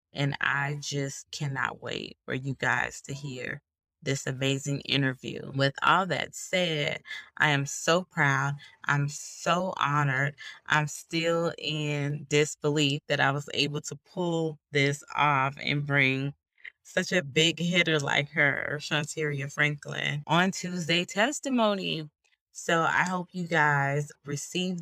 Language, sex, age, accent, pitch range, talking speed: English, female, 20-39, American, 140-165 Hz, 135 wpm